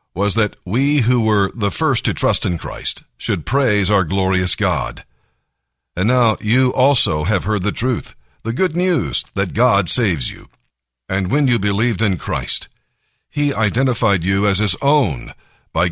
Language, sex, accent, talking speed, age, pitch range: English, male, American, 165 wpm, 50-69, 100-125 Hz